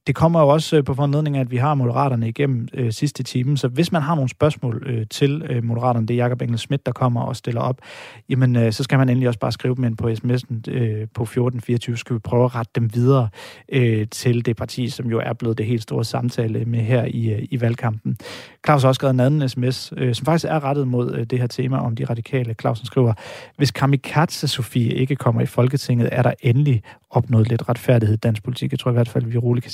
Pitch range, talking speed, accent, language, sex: 115-135 Hz, 245 wpm, native, Danish, male